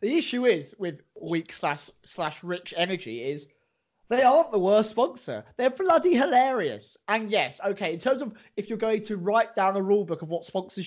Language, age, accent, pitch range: English, 30-49, British, 165-245 Hz